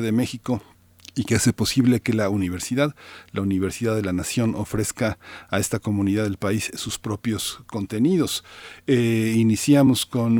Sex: male